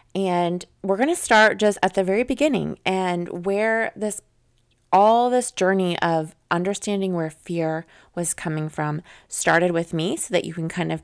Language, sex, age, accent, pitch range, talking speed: English, female, 20-39, American, 155-195 Hz, 175 wpm